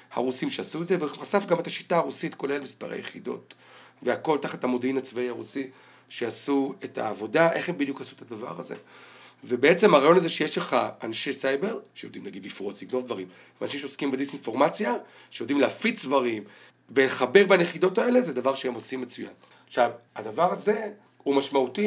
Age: 40-59